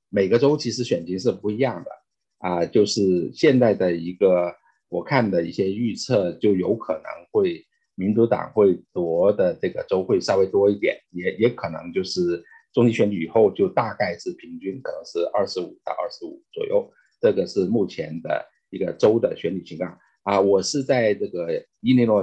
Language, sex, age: Chinese, male, 50-69